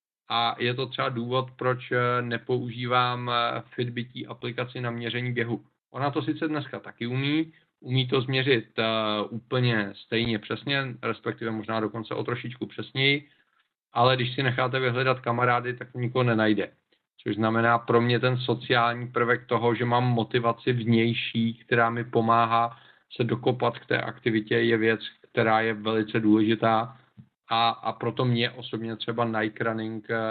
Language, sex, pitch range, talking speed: Czech, male, 115-125 Hz, 145 wpm